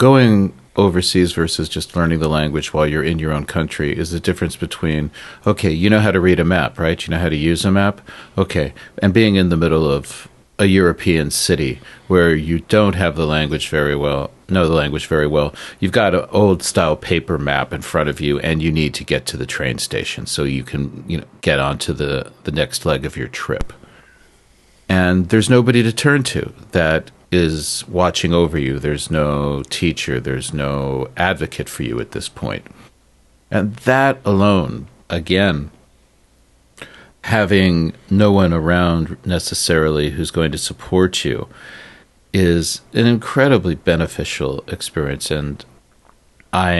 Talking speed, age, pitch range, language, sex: 170 wpm, 40-59, 75-95 Hz, English, male